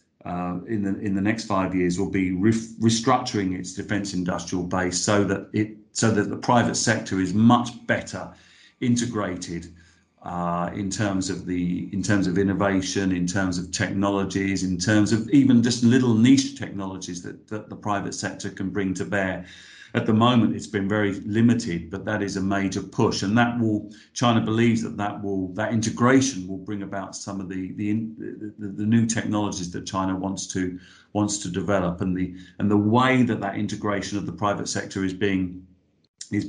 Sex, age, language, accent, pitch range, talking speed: male, 40-59, English, British, 95-110 Hz, 190 wpm